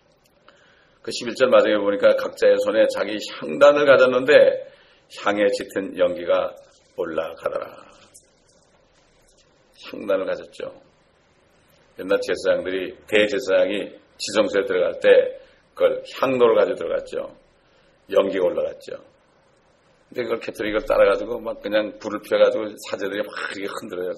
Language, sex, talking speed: English, male, 95 wpm